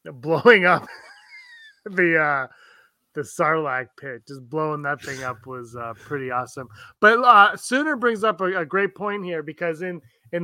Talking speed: 165 wpm